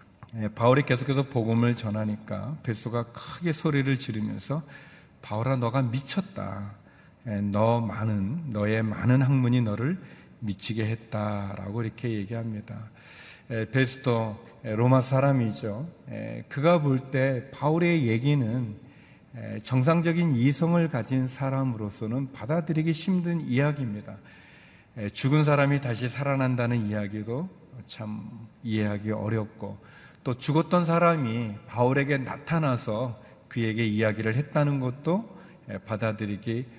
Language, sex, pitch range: Korean, male, 110-140 Hz